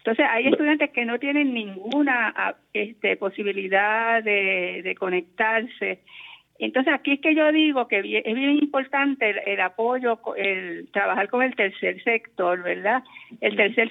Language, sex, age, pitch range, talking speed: Spanish, female, 50-69, 205-260 Hz, 145 wpm